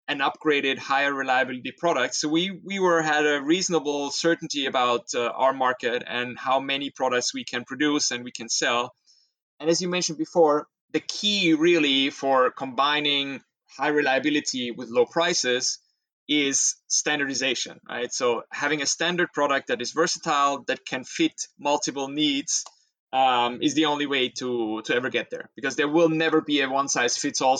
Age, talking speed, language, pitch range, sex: 20-39, 165 wpm, English, 130-160 Hz, male